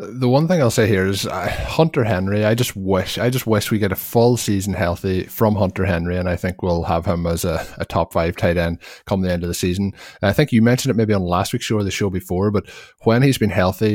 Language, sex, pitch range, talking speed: English, male, 90-105 Hz, 270 wpm